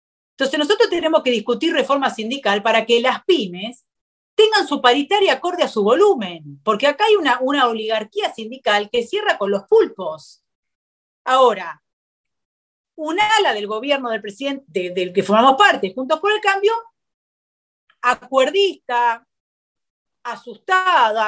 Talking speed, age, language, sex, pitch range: 135 wpm, 40-59, Spanish, female, 200-295 Hz